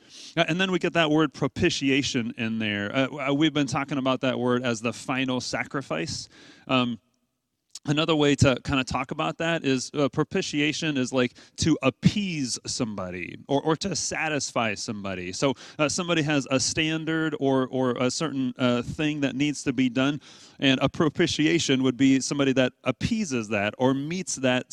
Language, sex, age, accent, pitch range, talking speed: English, male, 30-49, American, 125-155 Hz, 170 wpm